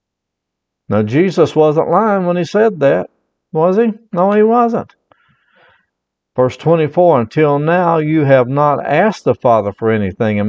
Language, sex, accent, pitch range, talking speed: English, male, American, 125-170 Hz, 150 wpm